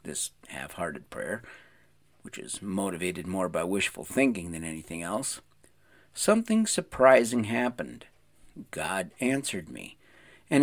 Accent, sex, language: American, male, English